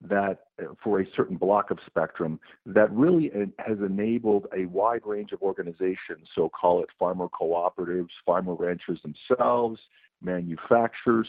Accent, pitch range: American, 100-125 Hz